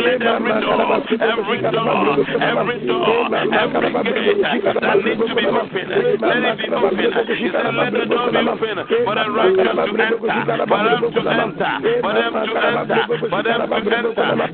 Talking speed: 155 wpm